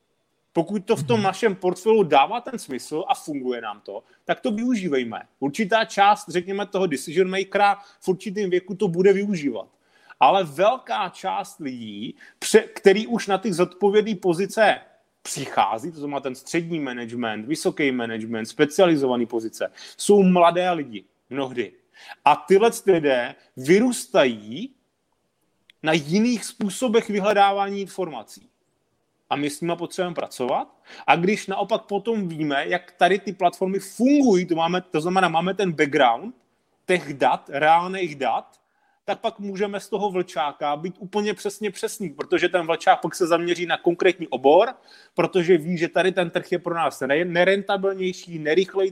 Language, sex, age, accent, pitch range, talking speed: Czech, male, 30-49, native, 165-205 Hz, 145 wpm